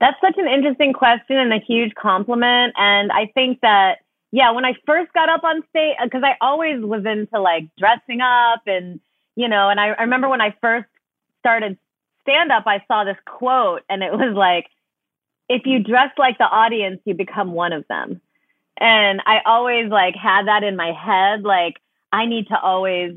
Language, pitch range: English, 185-250 Hz